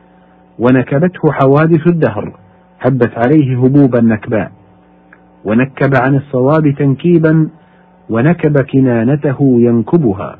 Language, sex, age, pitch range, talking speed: Arabic, male, 50-69, 110-145 Hz, 80 wpm